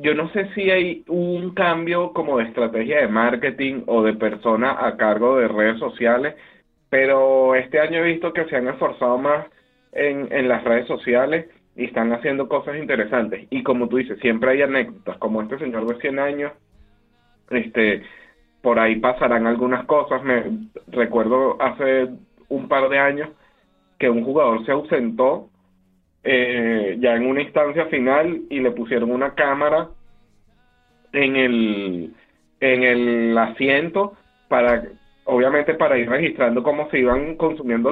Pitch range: 115-150 Hz